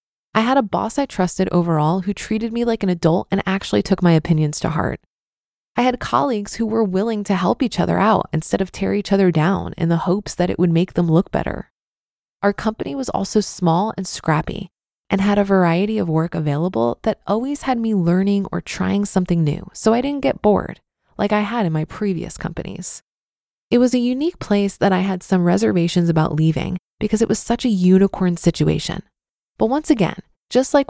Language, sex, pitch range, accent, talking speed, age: English, female, 170-215 Hz, American, 205 wpm, 20-39